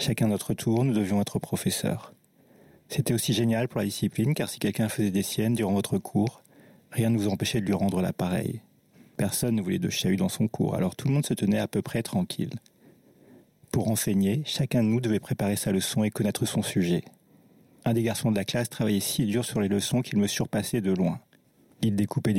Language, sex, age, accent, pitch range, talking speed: French, male, 40-59, French, 100-120 Hz, 215 wpm